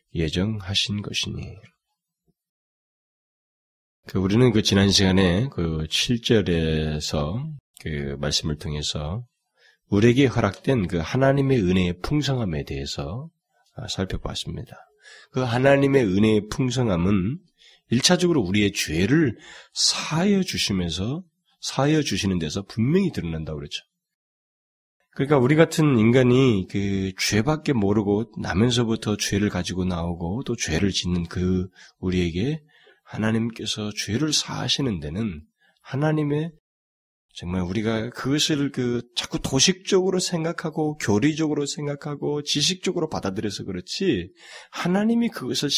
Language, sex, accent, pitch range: Korean, male, native, 100-160 Hz